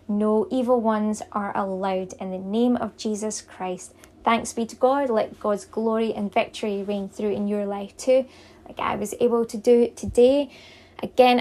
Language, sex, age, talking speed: English, female, 20-39, 185 wpm